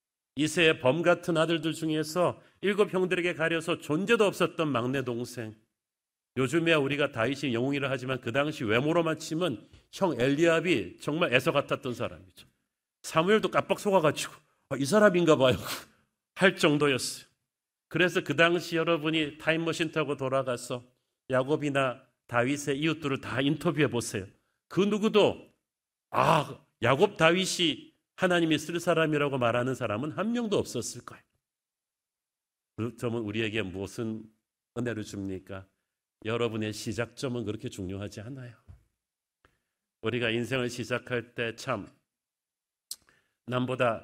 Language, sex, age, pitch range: Korean, male, 40-59, 115-160 Hz